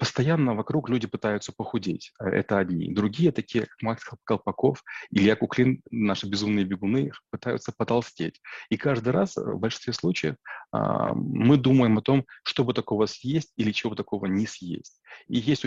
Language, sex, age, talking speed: Russian, male, 30-49, 155 wpm